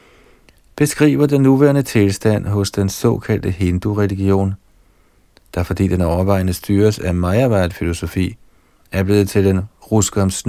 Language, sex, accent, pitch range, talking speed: Danish, male, native, 95-115 Hz, 115 wpm